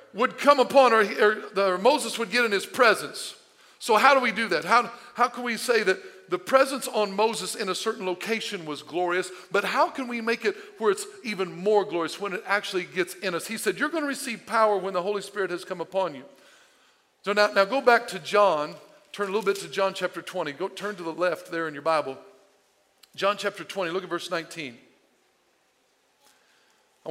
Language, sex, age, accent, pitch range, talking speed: English, male, 50-69, American, 180-245 Hz, 220 wpm